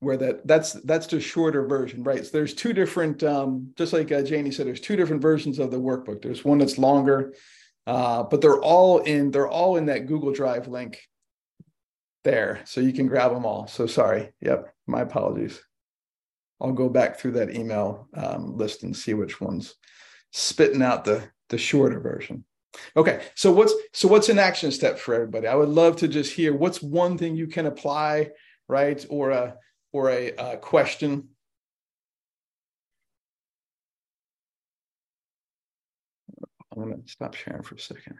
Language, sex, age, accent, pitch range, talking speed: English, male, 50-69, American, 130-165 Hz, 170 wpm